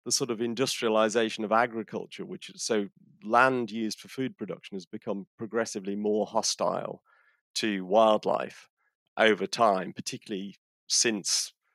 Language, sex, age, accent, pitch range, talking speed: English, male, 40-59, British, 100-115 Hz, 125 wpm